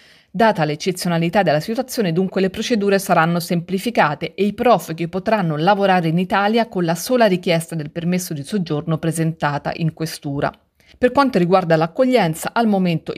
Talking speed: 150 wpm